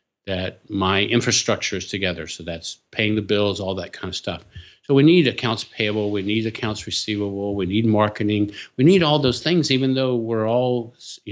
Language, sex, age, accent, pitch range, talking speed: English, male, 50-69, American, 100-120 Hz, 195 wpm